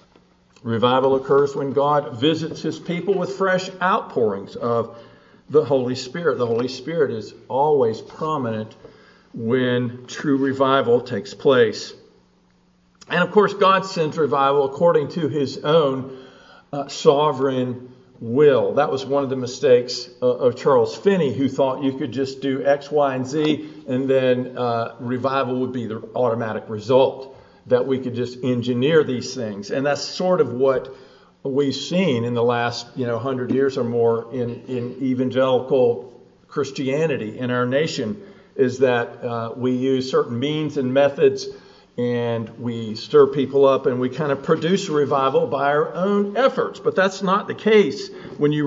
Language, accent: English, American